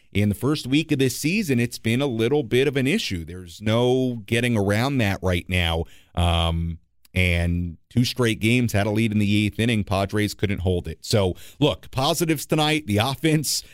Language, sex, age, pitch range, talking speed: English, male, 40-59, 100-130 Hz, 190 wpm